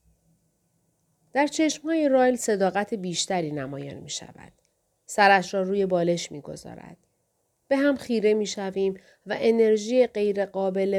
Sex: female